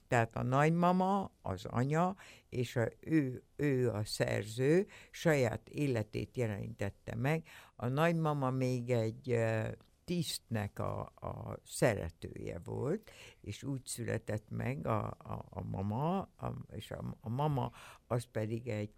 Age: 60-79